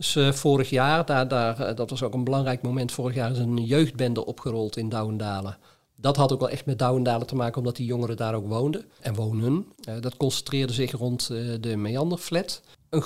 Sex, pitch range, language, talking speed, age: male, 120-145 Hz, Dutch, 200 wpm, 40-59